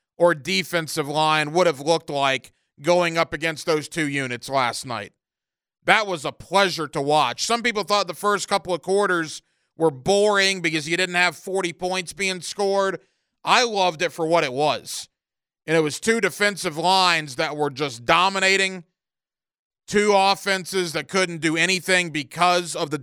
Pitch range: 160-195 Hz